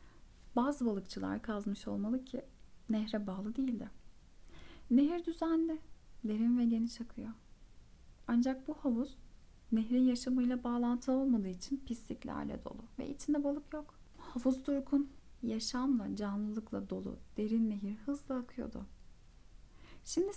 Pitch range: 220-270 Hz